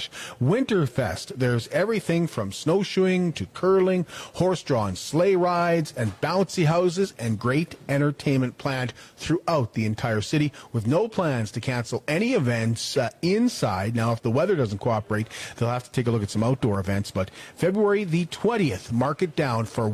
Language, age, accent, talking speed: English, 40-59, American, 165 wpm